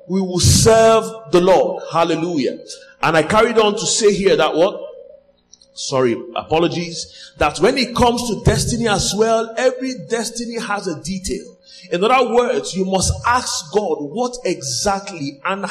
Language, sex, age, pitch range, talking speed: English, male, 30-49, 180-235 Hz, 155 wpm